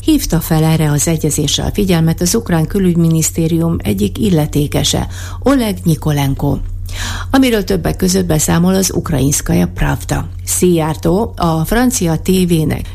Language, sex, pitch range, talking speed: Hungarian, female, 105-180 Hz, 115 wpm